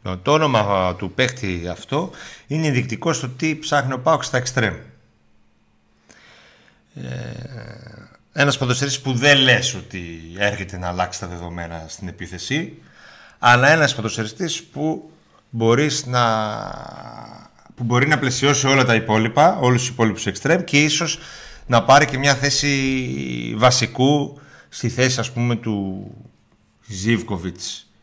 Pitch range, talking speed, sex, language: 100-135 Hz, 120 wpm, male, Greek